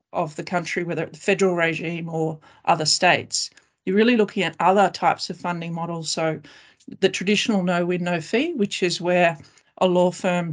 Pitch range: 165-195 Hz